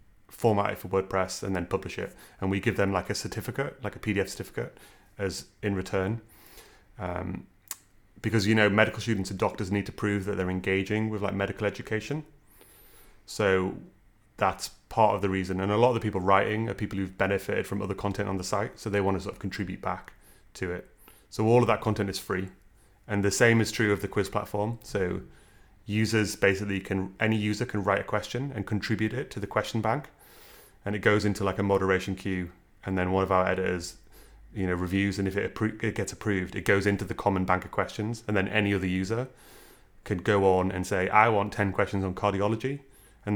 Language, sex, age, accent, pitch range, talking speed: English, male, 30-49, British, 95-110 Hz, 210 wpm